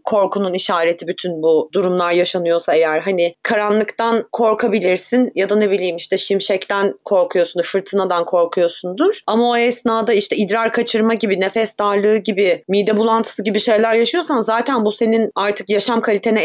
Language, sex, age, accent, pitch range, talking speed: Turkish, female, 30-49, native, 185-240 Hz, 145 wpm